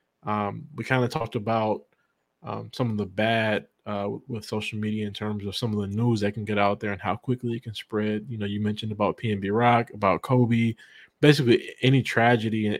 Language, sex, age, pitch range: English, male, 20-39, 105-120 Hz